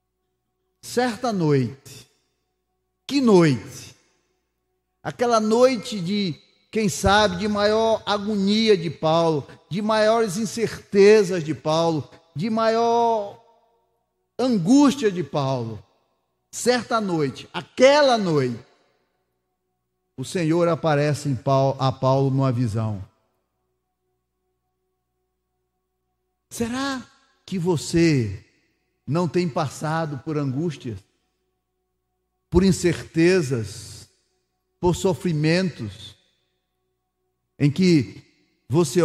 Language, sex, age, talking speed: Portuguese, male, 40-59, 80 wpm